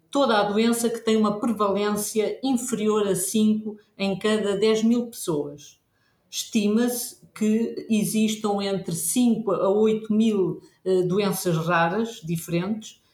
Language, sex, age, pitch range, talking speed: Portuguese, female, 50-69, 185-225 Hz, 120 wpm